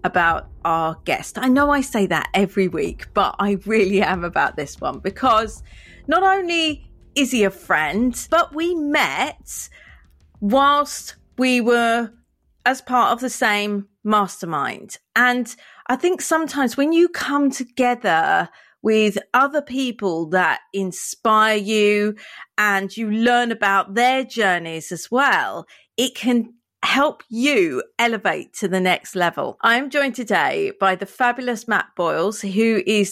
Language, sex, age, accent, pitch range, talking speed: English, female, 30-49, British, 205-265 Hz, 140 wpm